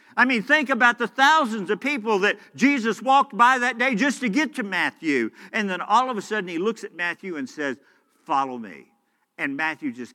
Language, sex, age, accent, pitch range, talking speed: English, male, 50-69, American, 185-250 Hz, 215 wpm